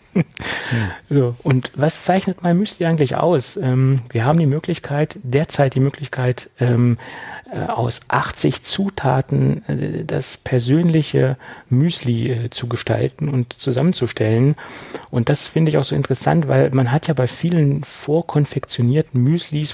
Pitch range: 125-150 Hz